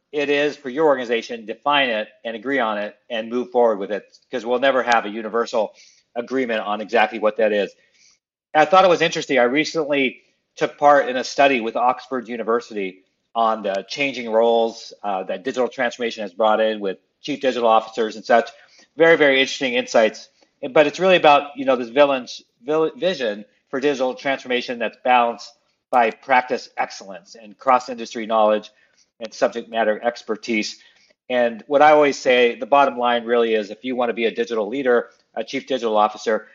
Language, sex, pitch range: English, male, 115-150 Hz